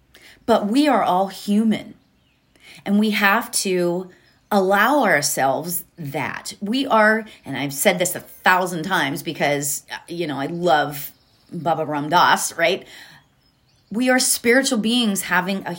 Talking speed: 135 wpm